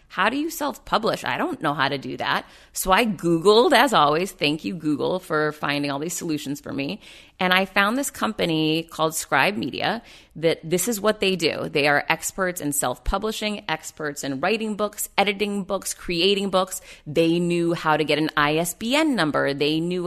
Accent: American